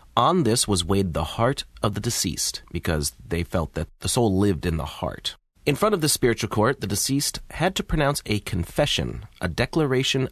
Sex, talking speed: male, 200 wpm